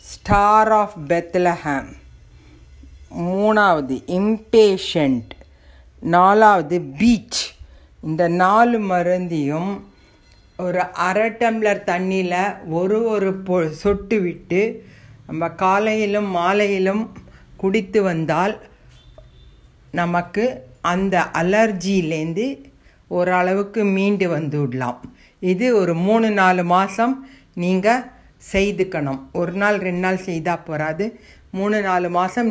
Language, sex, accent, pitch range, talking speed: Tamil, female, native, 165-215 Hz, 85 wpm